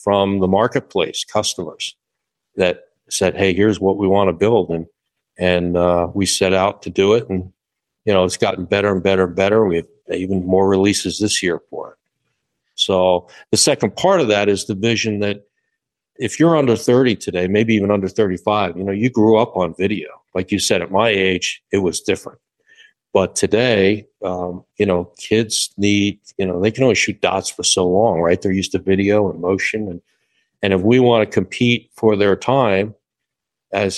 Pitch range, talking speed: 95-105 Hz, 195 wpm